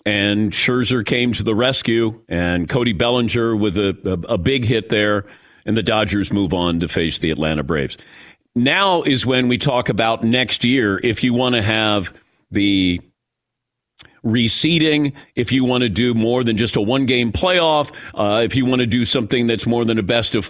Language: English